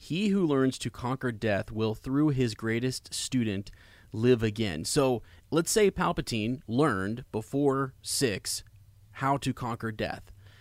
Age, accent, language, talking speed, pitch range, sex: 30-49, American, English, 135 wpm, 105-135 Hz, male